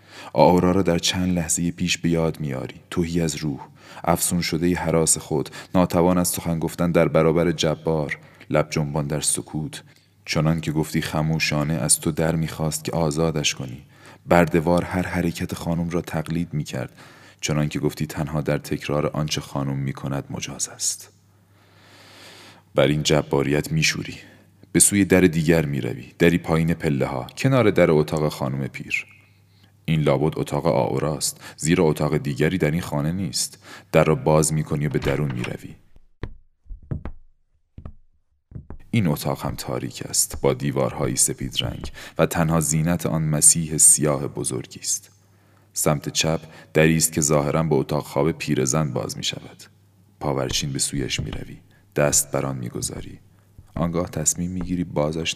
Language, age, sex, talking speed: Persian, 30-49, male, 145 wpm